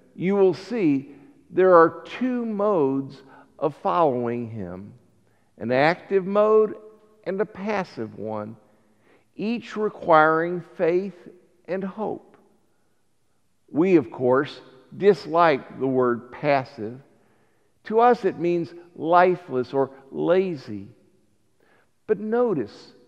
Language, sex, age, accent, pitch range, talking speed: English, male, 50-69, American, 130-195 Hz, 100 wpm